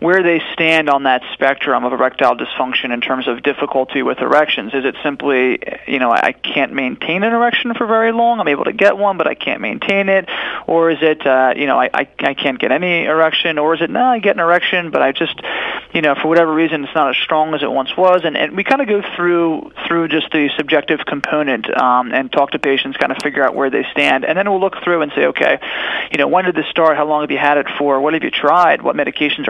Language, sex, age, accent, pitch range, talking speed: English, male, 30-49, American, 140-180 Hz, 255 wpm